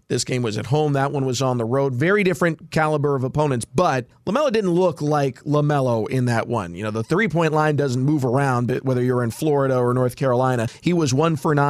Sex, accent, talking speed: male, American, 220 wpm